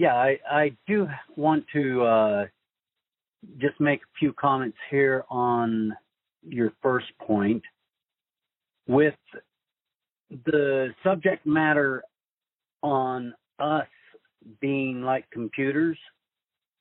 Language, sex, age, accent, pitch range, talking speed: English, male, 50-69, American, 125-160 Hz, 95 wpm